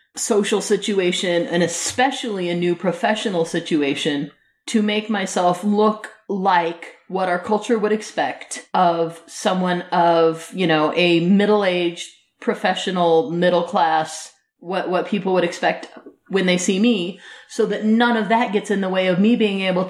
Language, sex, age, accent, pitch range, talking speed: English, female, 30-49, American, 170-210 Hz, 150 wpm